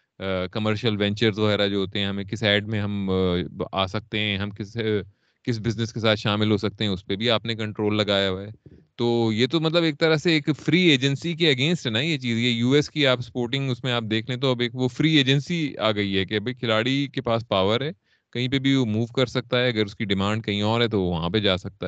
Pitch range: 105-135 Hz